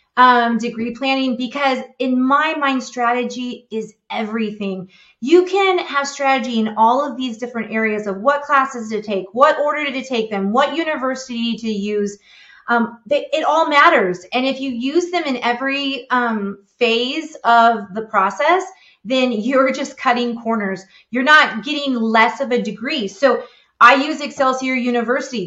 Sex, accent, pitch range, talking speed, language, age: female, American, 220-285 Hz, 160 wpm, English, 30-49